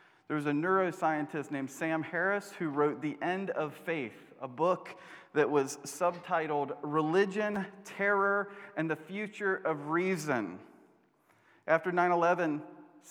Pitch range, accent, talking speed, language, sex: 150-185 Hz, American, 125 wpm, English, male